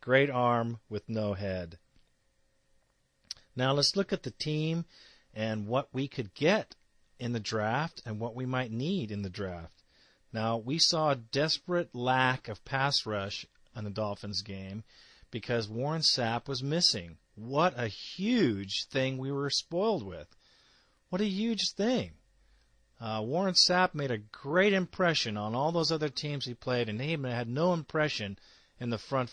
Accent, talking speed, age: American, 160 wpm, 40-59